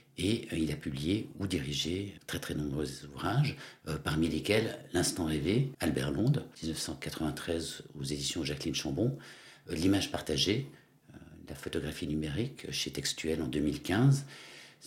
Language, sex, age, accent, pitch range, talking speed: French, male, 60-79, French, 80-130 Hz, 135 wpm